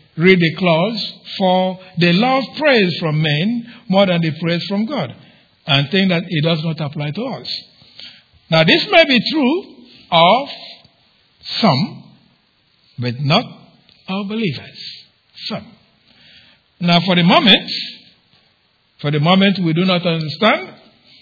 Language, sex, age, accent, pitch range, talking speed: English, male, 60-79, Nigerian, 150-195 Hz, 135 wpm